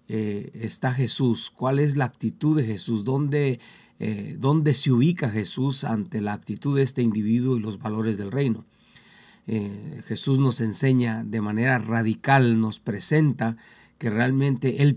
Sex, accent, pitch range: male, Mexican, 110-130 Hz